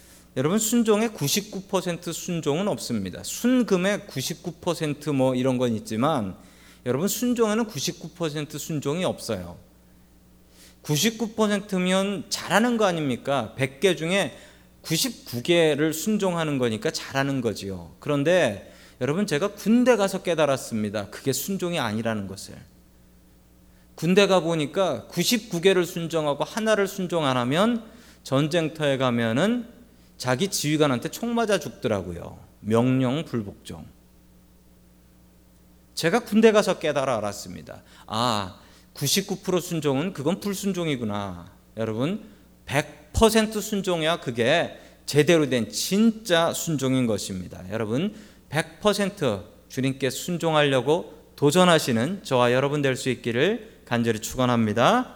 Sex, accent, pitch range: male, native, 115-195 Hz